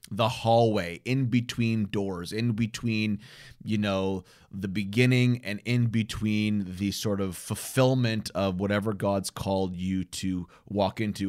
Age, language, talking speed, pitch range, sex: 30-49, English, 140 wpm, 95-120 Hz, male